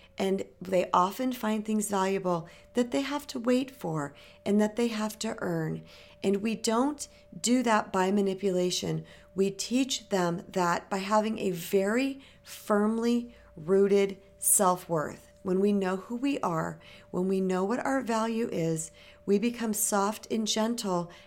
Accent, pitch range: American, 170-205 Hz